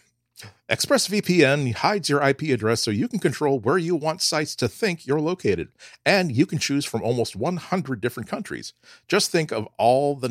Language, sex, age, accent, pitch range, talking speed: English, male, 40-59, American, 100-140 Hz, 185 wpm